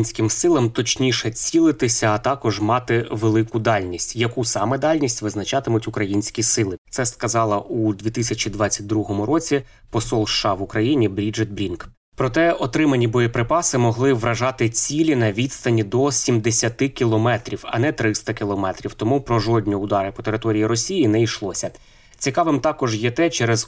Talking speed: 140 wpm